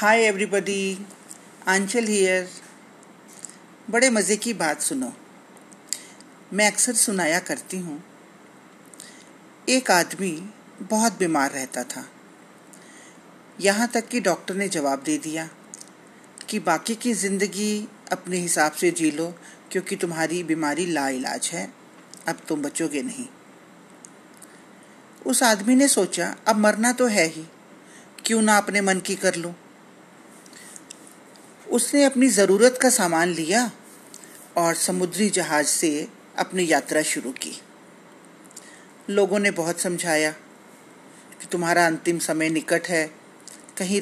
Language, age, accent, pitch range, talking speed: Hindi, 50-69, native, 170-215 Hz, 120 wpm